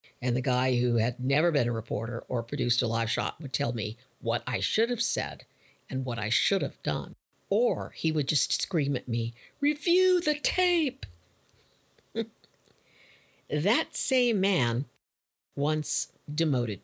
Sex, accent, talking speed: female, American, 155 wpm